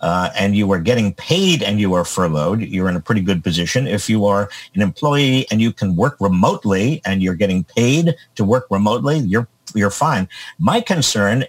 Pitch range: 105-145 Hz